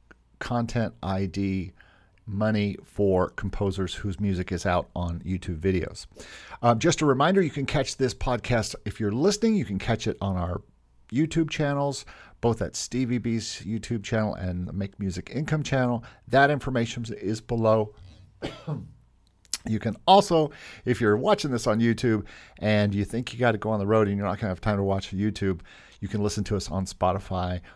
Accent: American